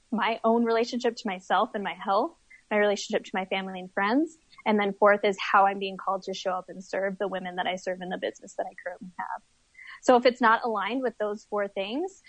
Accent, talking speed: American, 240 wpm